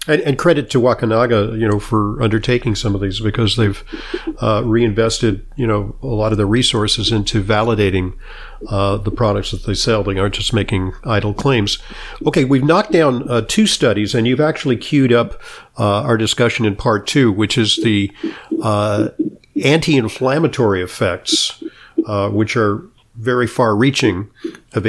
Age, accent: 50-69, American